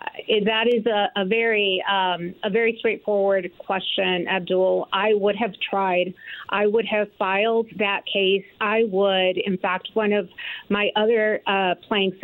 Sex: female